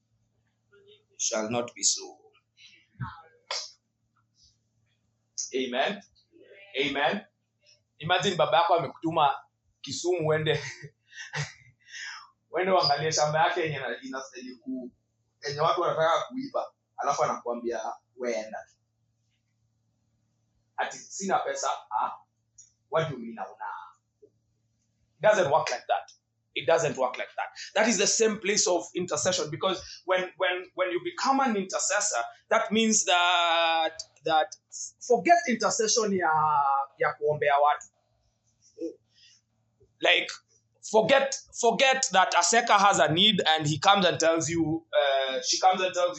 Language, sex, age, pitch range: English, male, 30-49, 115-195 Hz